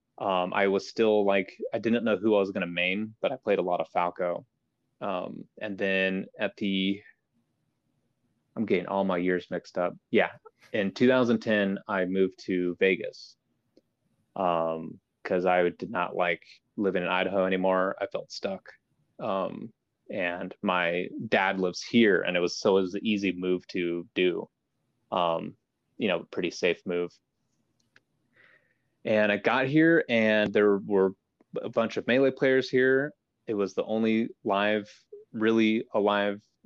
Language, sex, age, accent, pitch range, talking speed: English, male, 20-39, American, 95-115 Hz, 155 wpm